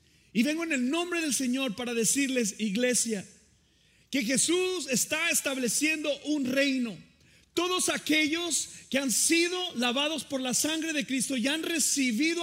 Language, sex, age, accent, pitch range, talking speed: Spanish, male, 40-59, Mexican, 195-290 Hz, 145 wpm